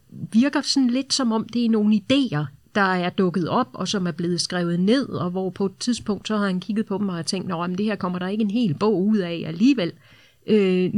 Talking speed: 250 wpm